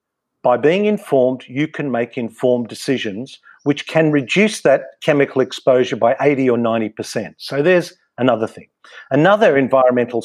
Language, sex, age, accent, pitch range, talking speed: English, male, 50-69, Australian, 125-160 Hz, 145 wpm